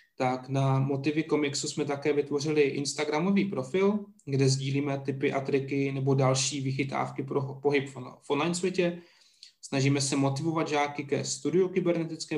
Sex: male